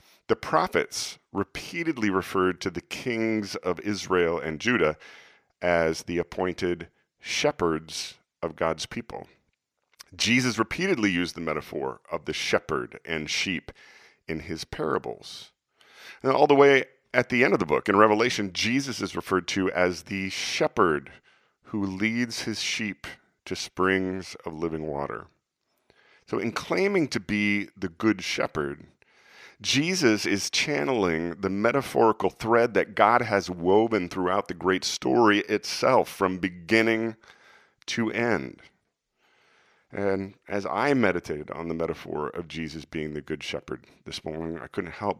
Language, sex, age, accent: English, male, 40-59, American